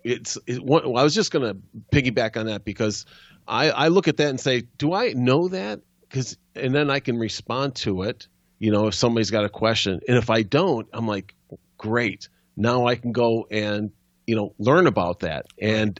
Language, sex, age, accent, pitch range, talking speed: English, male, 40-59, American, 105-125 Hz, 205 wpm